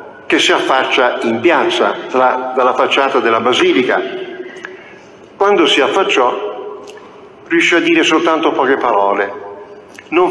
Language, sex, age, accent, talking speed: Italian, male, 50-69, native, 115 wpm